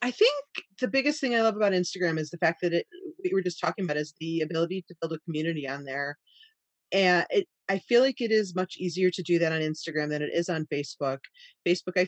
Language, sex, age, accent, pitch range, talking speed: English, female, 30-49, American, 150-185 Hz, 245 wpm